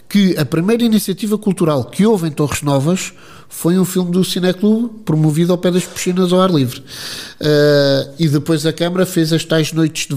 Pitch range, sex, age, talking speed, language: 160-215 Hz, male, 50-69, 195 wpm, Portuguese